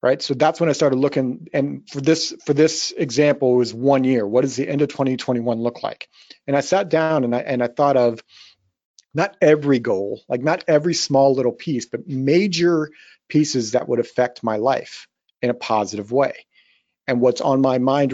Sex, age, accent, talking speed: male, 40-59, American, 200 wpm